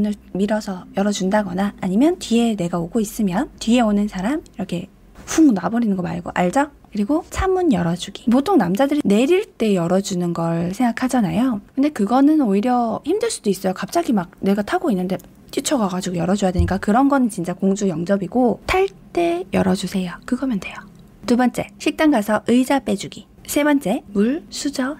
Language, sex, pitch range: Korean, female, 190-275 Hz